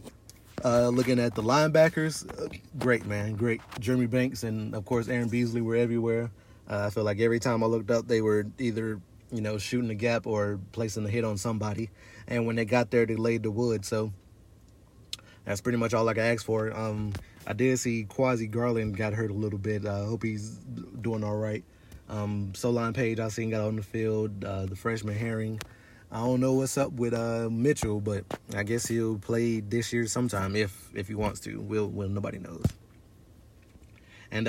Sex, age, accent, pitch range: male, 30-49, American, 105-125 Hz